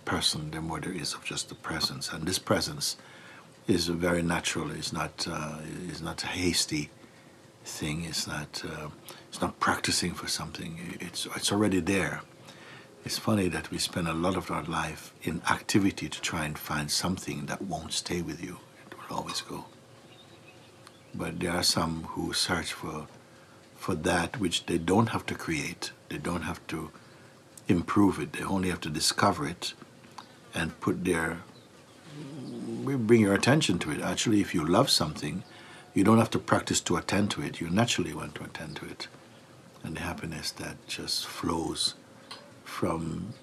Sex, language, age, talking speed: male, English, 60-79, 175 wpm